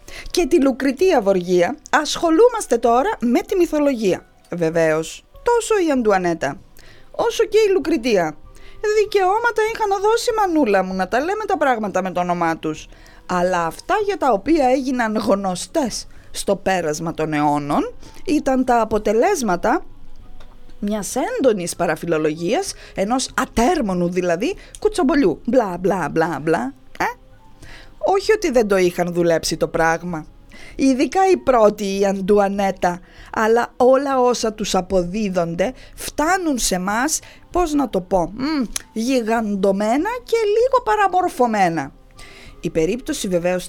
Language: English